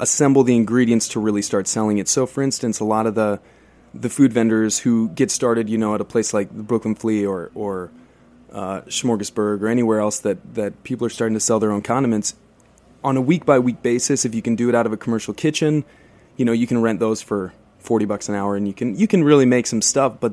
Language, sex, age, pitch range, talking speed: English, male, 20-39, 100-120 Hz, 240 wpm